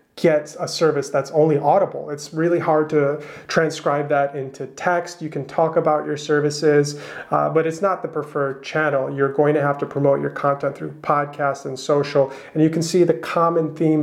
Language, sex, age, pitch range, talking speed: English, male, 30-49, 145-165 Hz, 195 wpm